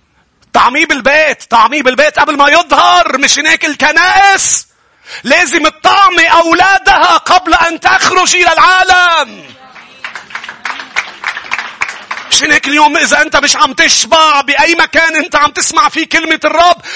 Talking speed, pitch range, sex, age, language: 120 wpm, 285-345 Hz, male, 40-59, English